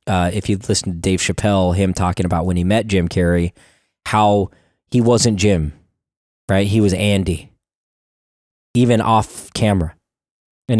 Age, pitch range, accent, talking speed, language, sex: 20-39, 95-125 Hz, American, 150 wpm, English, male